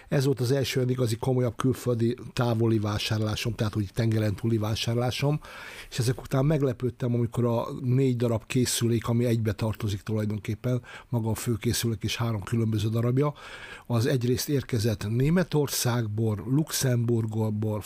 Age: 60-79